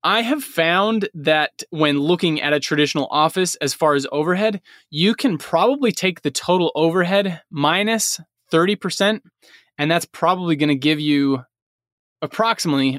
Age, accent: 20-39, American